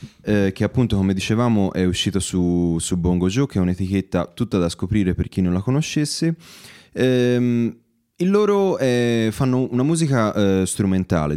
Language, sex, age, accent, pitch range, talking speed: Italian, male, 20-39, native, 90-125 Hz, 165 wpm